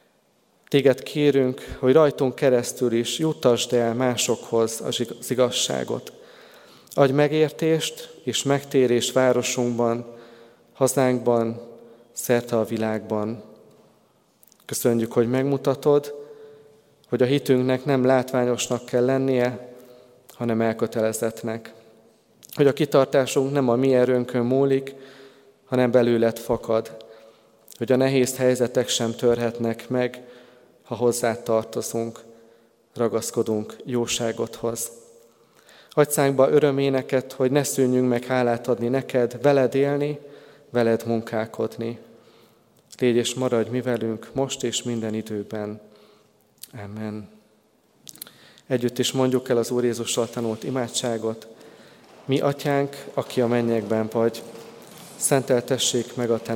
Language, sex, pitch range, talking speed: Hungarian, male, 115-135 Hz, 105 wpm